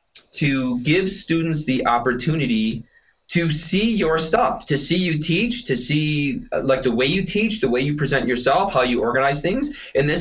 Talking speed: 190 wpm